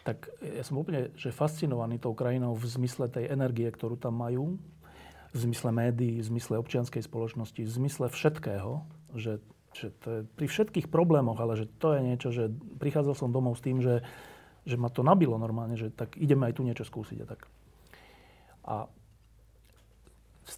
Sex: male